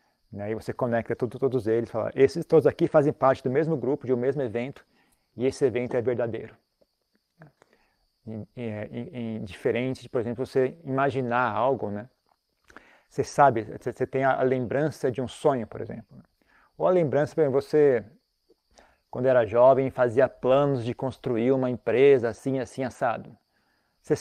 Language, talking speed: Portuguese, 170 wpm